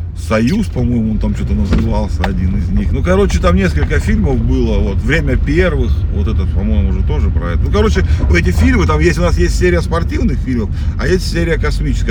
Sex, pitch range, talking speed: male, 80-95 Hz, 200 wpm